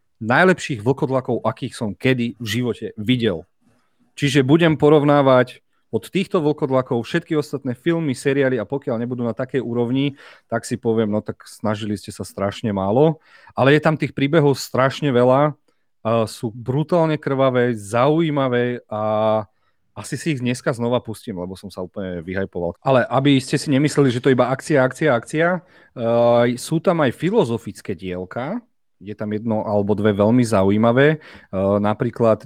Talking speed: 155 wpm